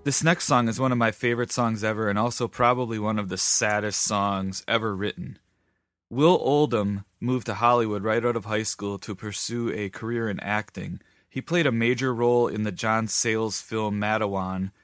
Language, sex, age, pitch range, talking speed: English, male, 30-49, 100-120 Hz, 190 wpm